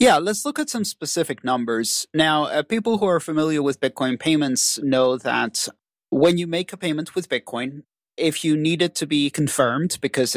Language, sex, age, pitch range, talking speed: English, male, 40-59, 135-165 Hz, 190 wpm